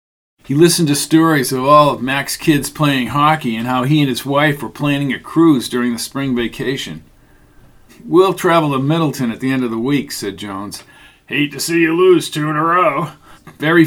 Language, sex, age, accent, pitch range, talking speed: English, male, 50-69, American, 130-165 Hz, 205 wpm